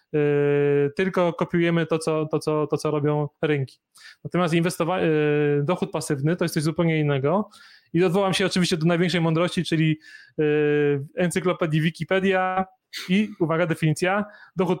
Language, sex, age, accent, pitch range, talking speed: Polish, male, 20-39, native, 160-185 Hz, 145 wpm